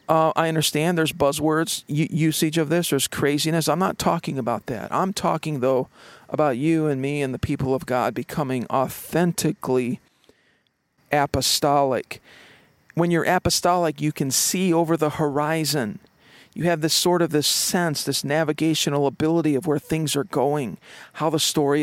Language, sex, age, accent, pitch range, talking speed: English, male, 50-69, American, 140-160 Hz, 155 wpm